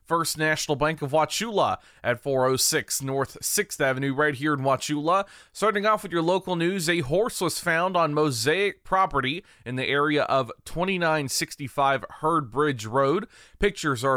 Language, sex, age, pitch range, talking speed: English, male, 30-49, 135-180 Hz, 155 wpm